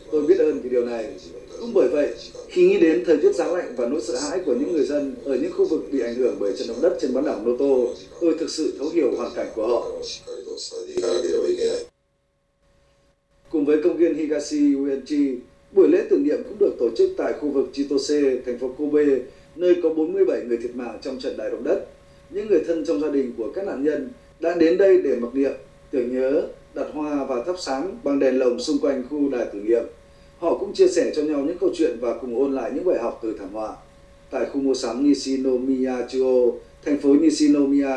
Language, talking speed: Vietnamese, 225 wpm